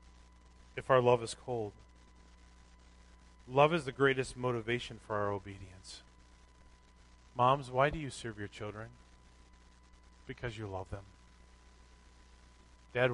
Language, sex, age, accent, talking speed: English, male, 30-49, American, 115 wpm